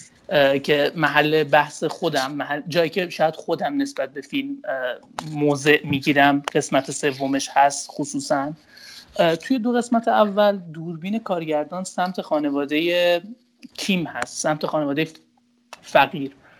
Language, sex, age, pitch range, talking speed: Persian, male, 30-49, 150-205 Hz, 110 wpm